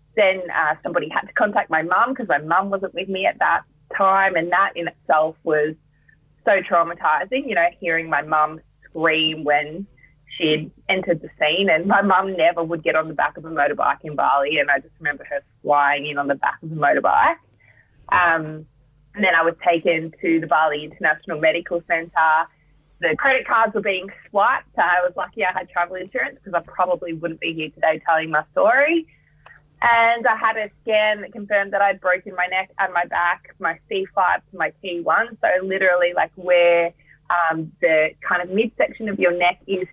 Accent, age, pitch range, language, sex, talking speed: Australian, 20-39, 155-190 Hz, English, female, 195 wpm